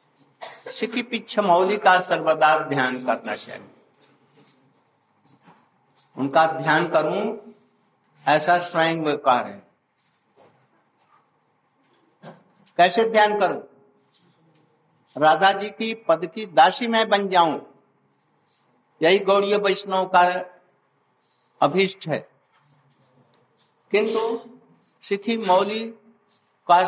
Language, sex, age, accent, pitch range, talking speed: Hindi, male, 60-79, native, 165-205 Hz, 80 wpm